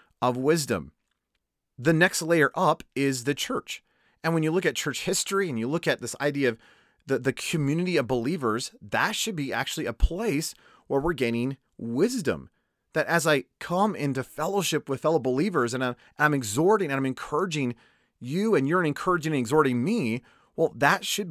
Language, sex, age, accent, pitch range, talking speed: English, male, 30-49, American, 130-170 Hz, 180 wpm